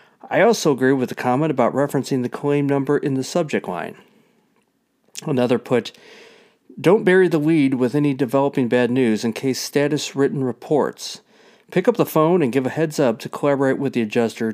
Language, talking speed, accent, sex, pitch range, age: English, 180 wpm, American, male, 120-150 Hz, 50-69